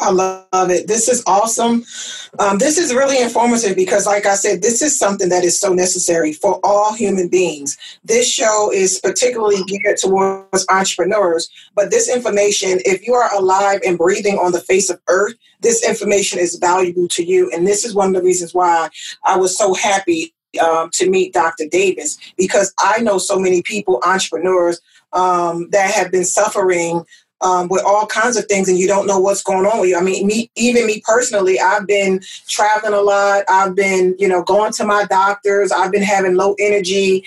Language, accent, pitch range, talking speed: English, American, 185-230 Hz, 195 wpm